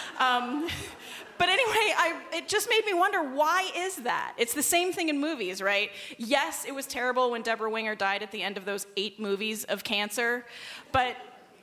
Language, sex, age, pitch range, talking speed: English, female, 20-39, 205-260 Hz, 185 wpm